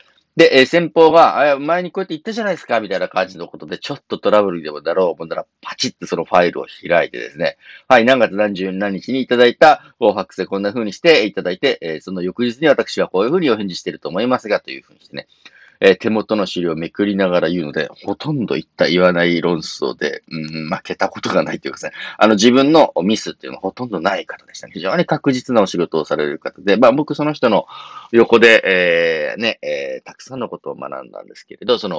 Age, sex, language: 40-59, male, Japanese